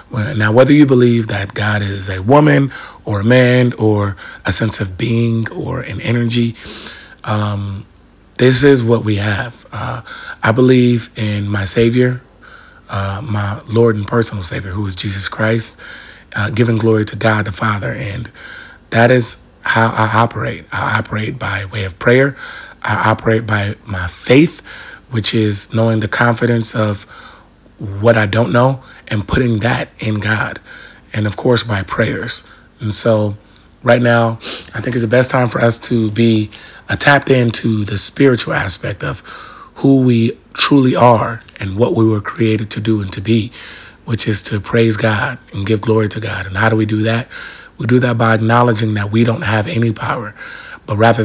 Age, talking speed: 30-49, 175 wpm